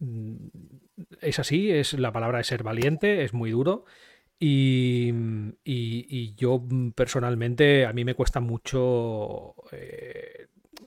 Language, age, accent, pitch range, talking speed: Spanish, 40-59, Spanish, 120-145 Hz, 120 wpm